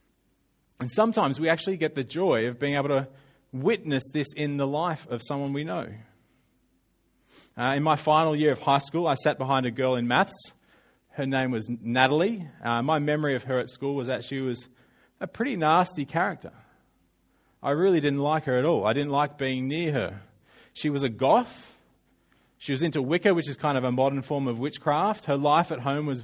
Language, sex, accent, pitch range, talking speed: English, male, Australian, 125-160 Hz, 205 wpm